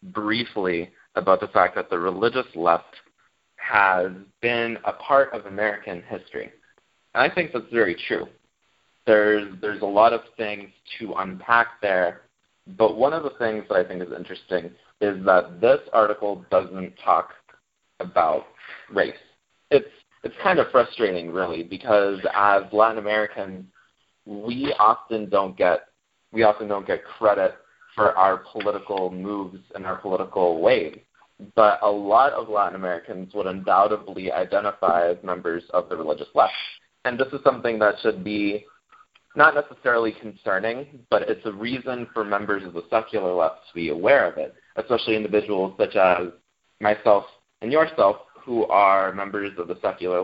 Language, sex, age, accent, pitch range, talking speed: English, male, 30-49, American, 100-115 Hz, 155 wpm